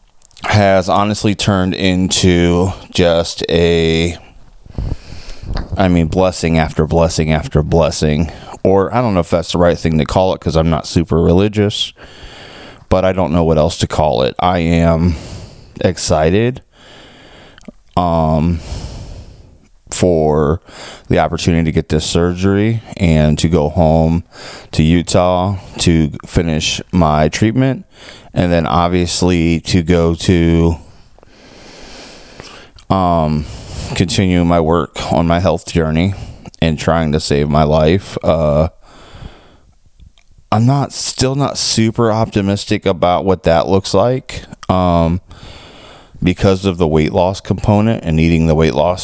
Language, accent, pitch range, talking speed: English, American, 80-100 Hz, 125 wpm